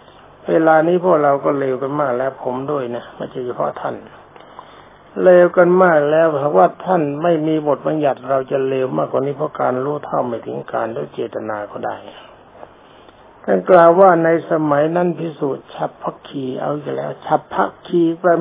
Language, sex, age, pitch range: Thai, male, 60-79, 140-165 Hz